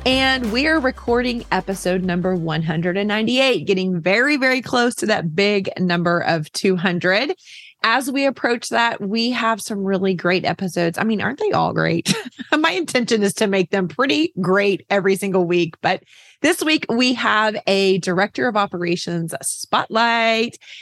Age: 30-49